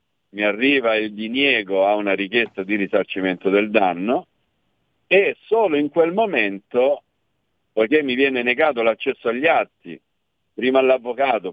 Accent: native